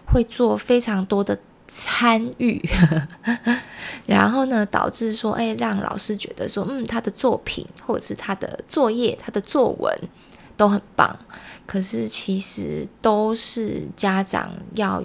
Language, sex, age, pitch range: Chinese, female, 20-39, 185-220 Hz